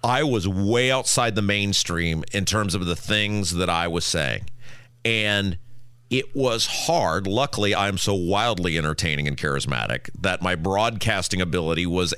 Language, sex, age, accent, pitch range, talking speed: English, male, 40-59, American, 100-125 Hz, 155 wpm